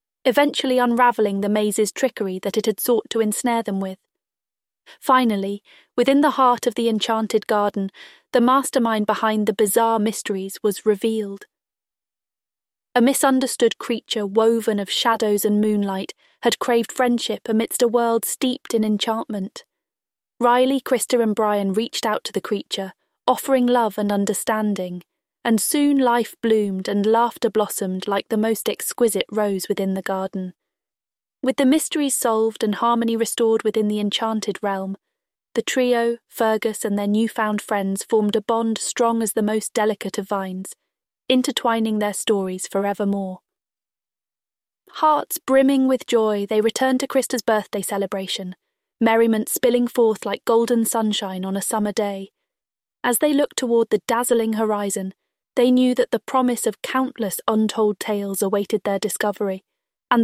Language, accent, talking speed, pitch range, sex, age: English, British, 145 wpm, 205-240 Hz, female, 30-49